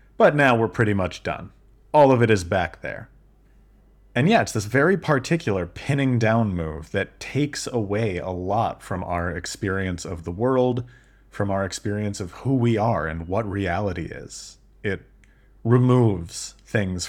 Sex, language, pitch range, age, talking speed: male, English, 90-115 Hz, 30-49, 165 wpm